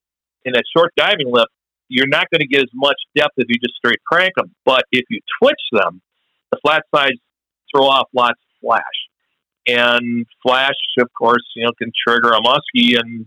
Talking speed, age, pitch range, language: 195 wpm, 50-69, 115-135 Hz, English